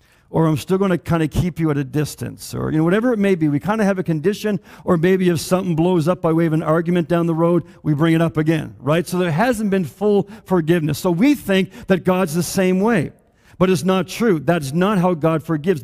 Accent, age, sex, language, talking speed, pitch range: American, 50-69, male, English, 260 wpm, 165-220 Hz